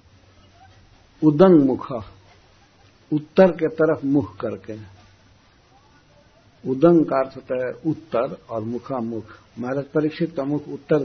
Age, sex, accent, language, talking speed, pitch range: 60-79, male, native, Hindi, 100 wpm, 110-150 Hz